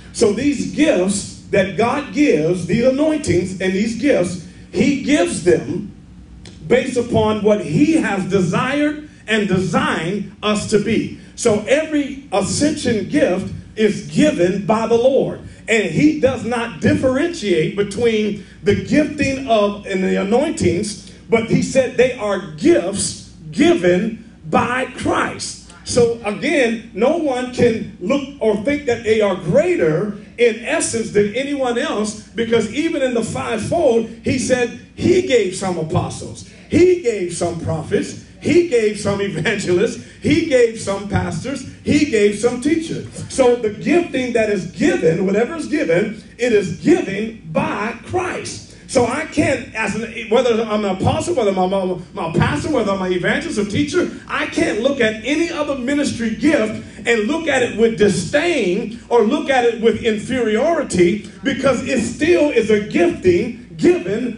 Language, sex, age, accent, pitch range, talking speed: English, male, 40-59, American, 200-275 Hz, 145 wpm